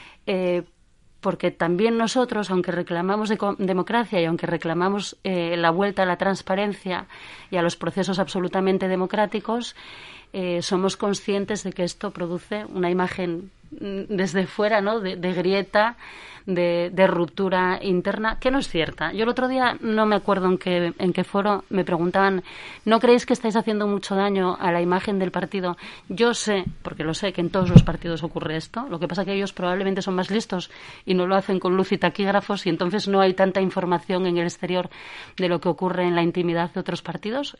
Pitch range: 175-205 Hz